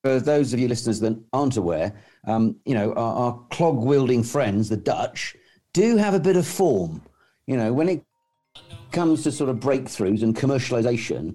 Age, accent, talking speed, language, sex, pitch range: 50-69, British, 180 wpm, English, male, 110-135 Hz